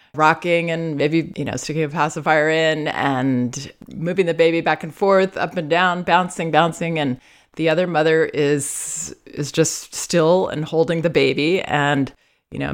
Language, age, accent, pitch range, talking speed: English, 30-49, American, 145-170 Hz, 170 wpm